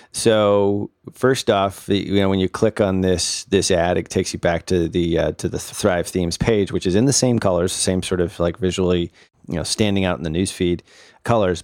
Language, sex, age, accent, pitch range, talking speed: English, male, 30-49, American, 90-110 Hz, 220 wpm